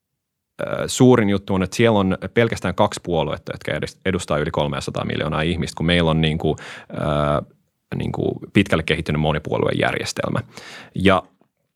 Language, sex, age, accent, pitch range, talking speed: Finnish, male, 30-49, native, 85-100 Hz, 140 wpm